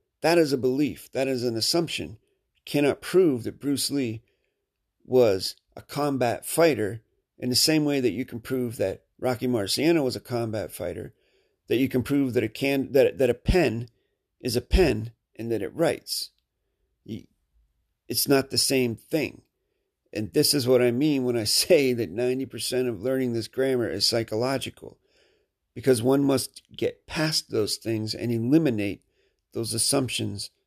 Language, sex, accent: English, male, American